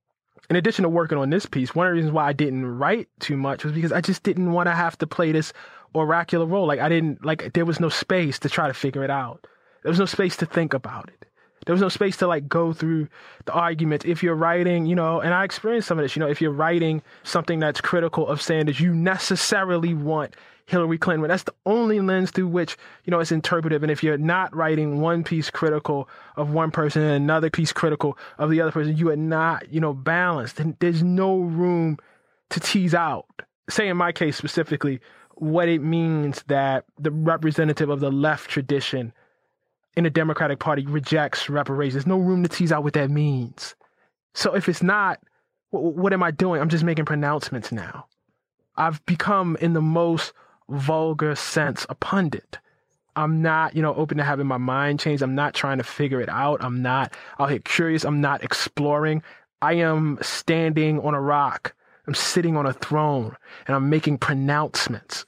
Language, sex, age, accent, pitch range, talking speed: English, male, 20-39, American, 145-170 Hz, 205 wpm